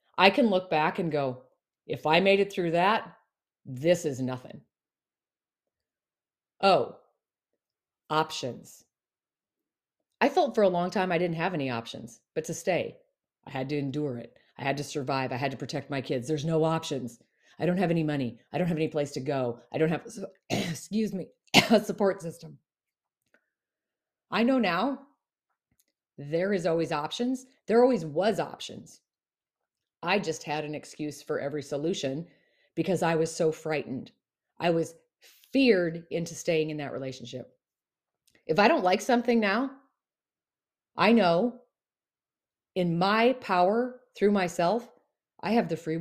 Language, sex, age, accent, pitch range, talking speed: English, female, 40-59, American, 150-200 Hz, 155 wpm